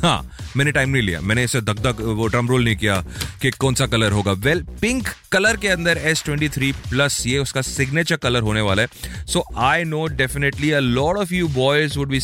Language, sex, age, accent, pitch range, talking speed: Hindi, male, 30-49, native, 100-140 Hz, 105 wpm